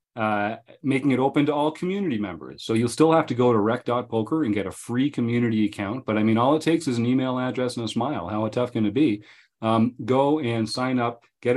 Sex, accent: male, American